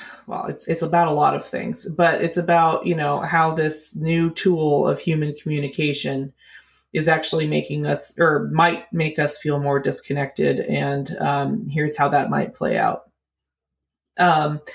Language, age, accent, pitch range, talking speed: English, 20-39, American, 150-180 Hz, 165 wpm